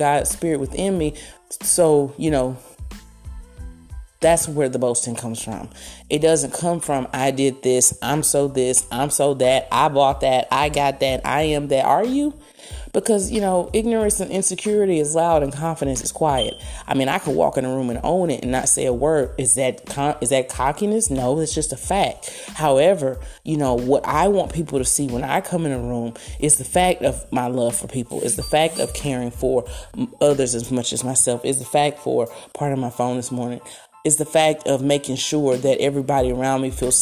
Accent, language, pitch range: American, English, 130-165 Hz